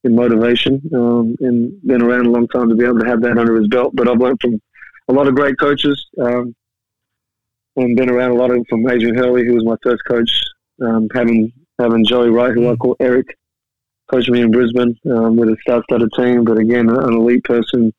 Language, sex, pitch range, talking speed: English, male, 115-125 Hz, 220 wpm